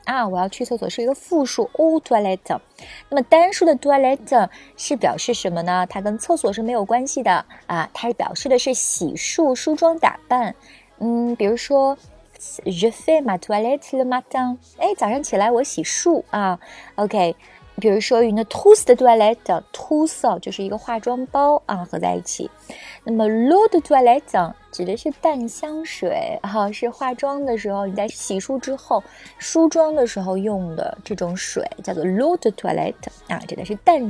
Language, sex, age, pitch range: Chinese, female, 20-39, 200-275 Hz